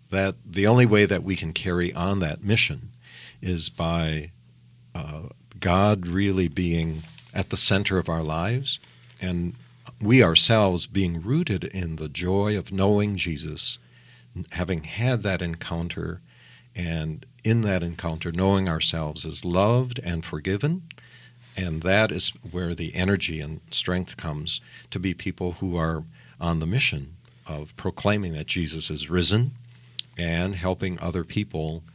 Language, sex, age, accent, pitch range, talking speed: English, male, 50-69, American, 85-110 Hz, 140 wpm